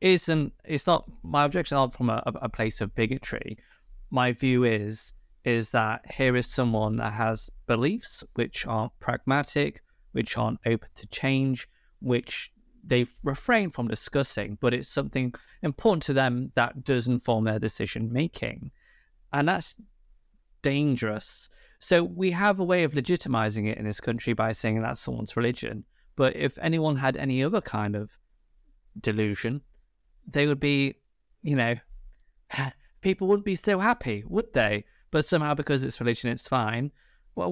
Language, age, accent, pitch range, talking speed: English, 20-39, British, 110-150 Hz, 145 wpm